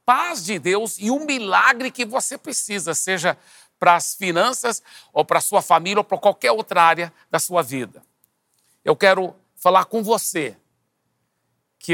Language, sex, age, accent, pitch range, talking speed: Portuguese, male, 60-79, Brazilian, 160-210 Hz, 160 wpm